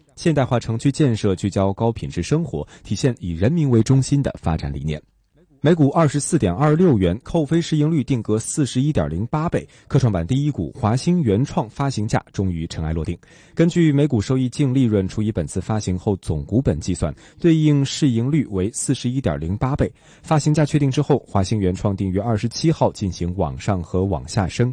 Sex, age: male, 20-39